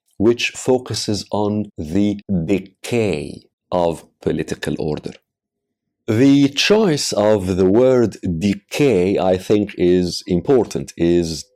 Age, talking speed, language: 50-69, 100 wpm, Arabic